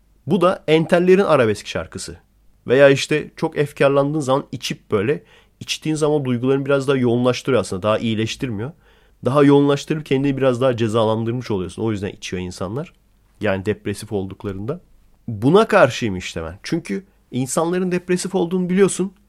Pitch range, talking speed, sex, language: 110-165 Hz, 135 wpm, male, Turkish